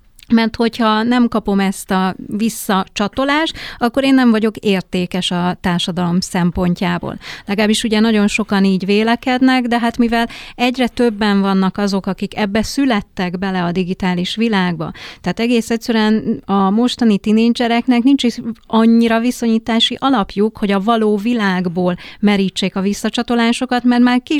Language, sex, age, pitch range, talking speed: English, female, 30-49, 190-240 Hz, 135 wpm